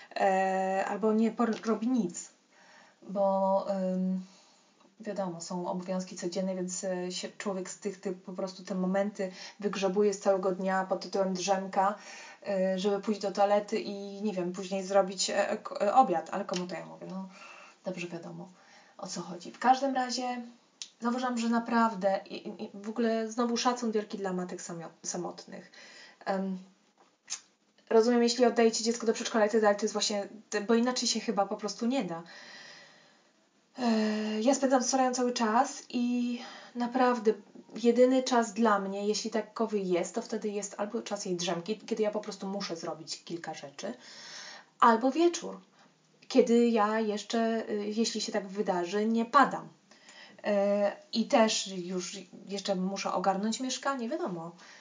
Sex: female